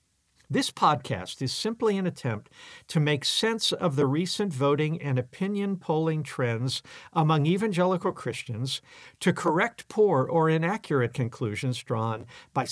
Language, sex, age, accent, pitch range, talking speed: English, male, 50-69, American, 125-170 Hz, 130 wpm